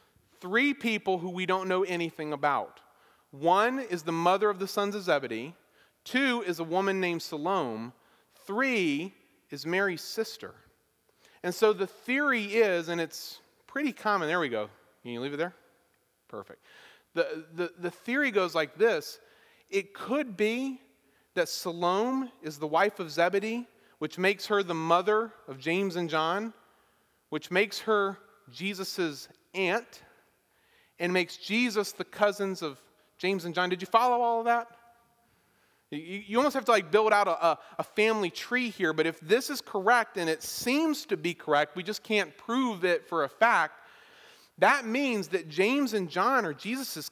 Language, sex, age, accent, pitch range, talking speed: English, male, 40-59, American, 170-230 Hz, 165 wpm